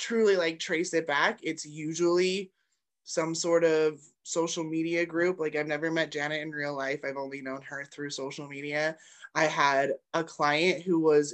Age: 20-39